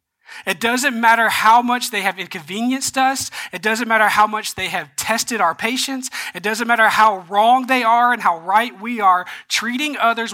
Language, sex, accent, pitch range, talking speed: English, male, American, 190-245 Hz, 190 wpm